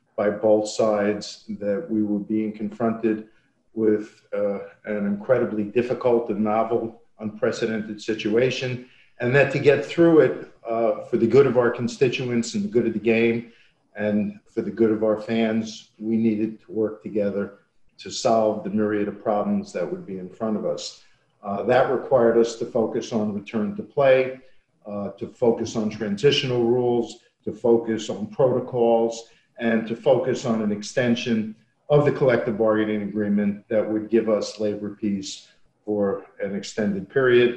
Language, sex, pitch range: English, male, 105-125 Hz